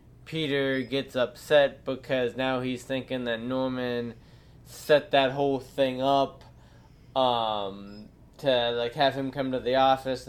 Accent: American